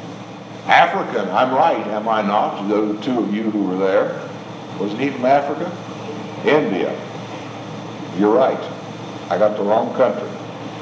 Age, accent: 60-79, American